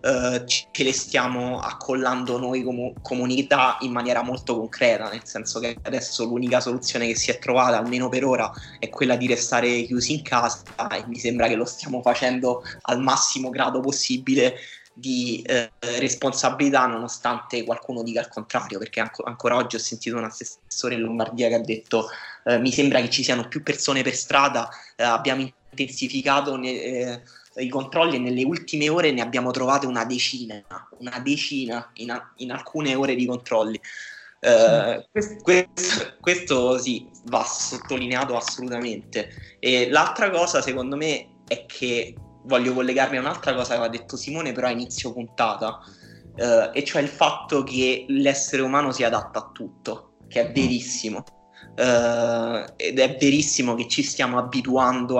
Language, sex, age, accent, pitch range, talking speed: Italian, male, 20-39, native, 120-135 Hz, 155 wpm